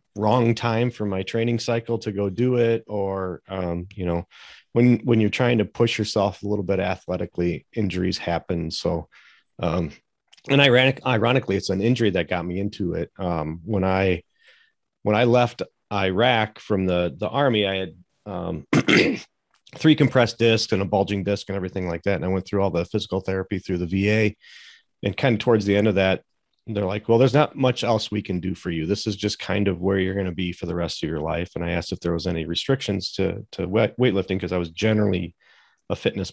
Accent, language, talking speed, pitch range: American, English, 215 wpm, 90-110 Hz